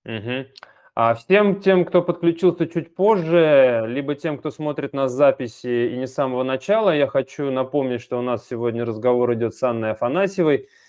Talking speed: 170 wpm